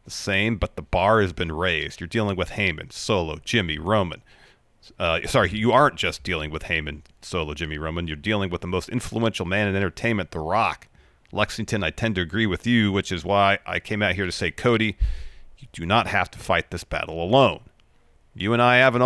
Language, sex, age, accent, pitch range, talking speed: English, male, 40-59, American, 85-110 Hz, 210 wpm